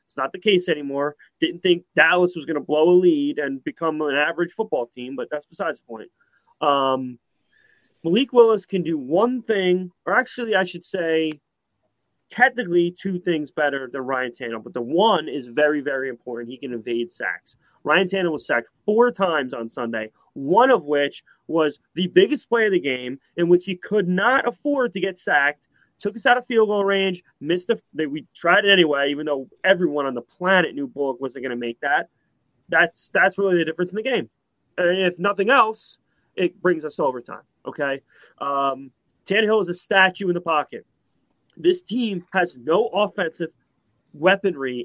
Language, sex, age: English, male, 30-49